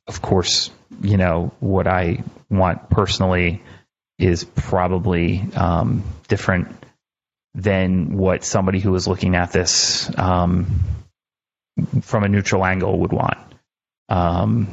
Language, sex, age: English, male, 30-49